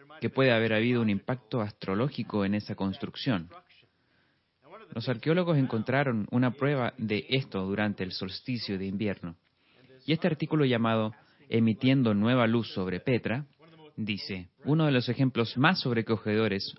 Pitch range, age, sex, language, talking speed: 105-135 Hz, 30-49, male, Spanish, 135 wpm